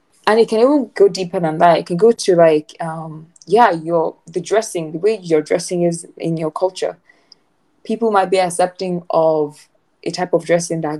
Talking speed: 195 wpm